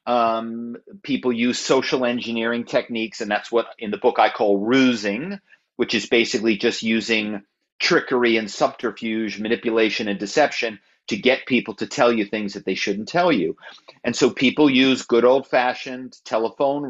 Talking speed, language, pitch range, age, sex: 160 wpm, English, 105-130 Hz, 40-59, male